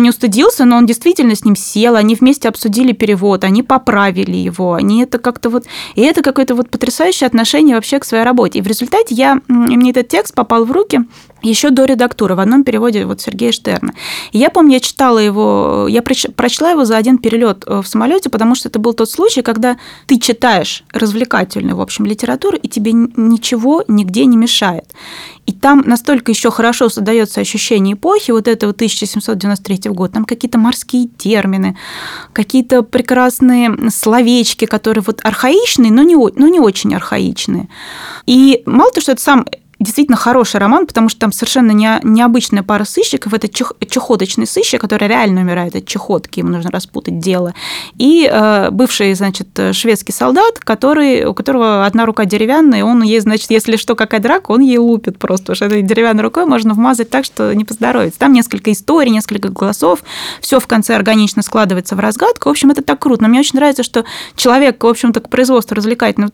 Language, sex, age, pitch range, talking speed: Russian, female, 20-39, 215-255 Hz, 180 wpm